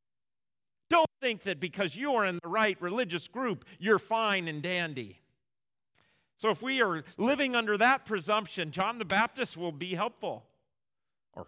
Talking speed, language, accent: 155 wpm, English, American